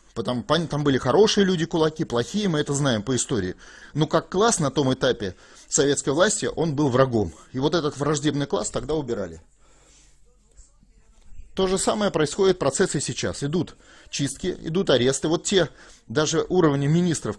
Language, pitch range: Russian, 125-170 Hz